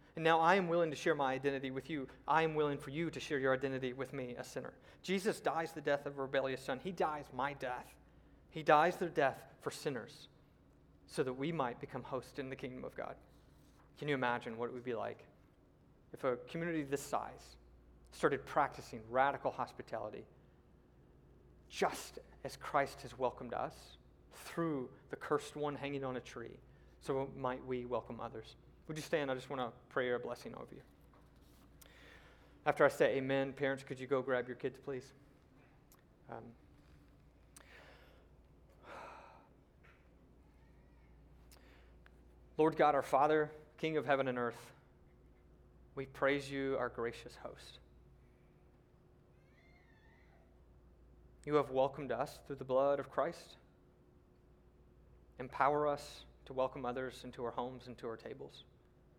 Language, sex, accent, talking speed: English, male, American, 155 wpm